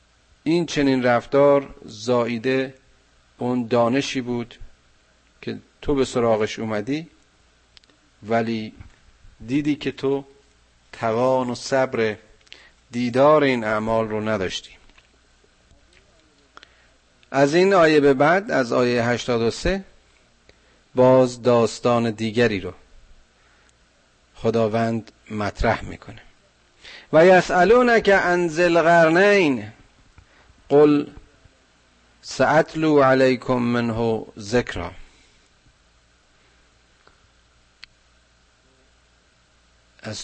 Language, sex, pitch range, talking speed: Persian, male, 90-135 Hz, 75 wpm